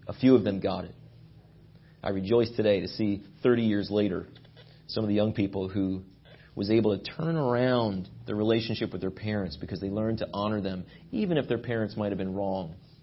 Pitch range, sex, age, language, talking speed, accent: 115-160 Hz, male, 40-59, English, 205 wpm, American